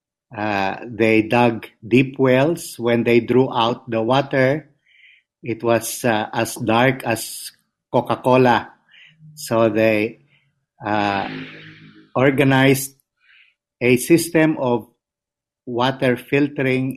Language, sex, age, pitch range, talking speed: English, male, 50-69, 115-135 Hz, 95 wpm